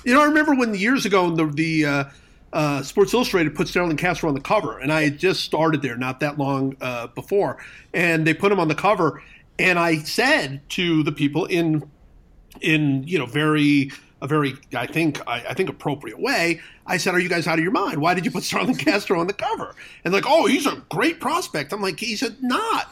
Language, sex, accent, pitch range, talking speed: English, male, American, 150-200 Hz, 230 wpm